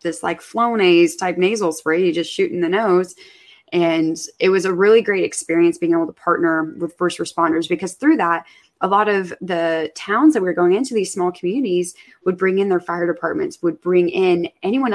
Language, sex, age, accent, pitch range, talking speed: English, female, 20-39, American, 175-215 Hz, 200 wpm